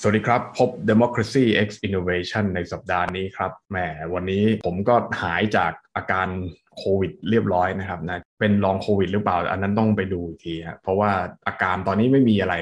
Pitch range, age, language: 90-110 Hz, 20-39, Thai